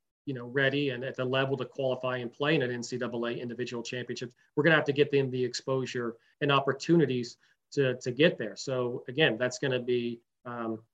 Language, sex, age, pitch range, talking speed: English, male, 30-49, 120-145 Hz, 210 wpm